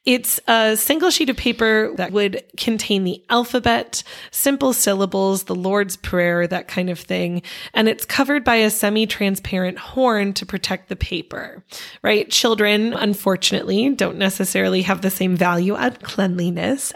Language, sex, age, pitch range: English, female, 20-39, 185-230 Hz